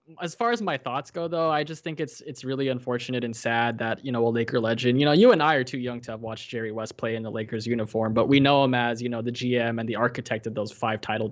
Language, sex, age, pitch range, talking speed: English, male, 20-39, 115-135 Hz, 295 wpm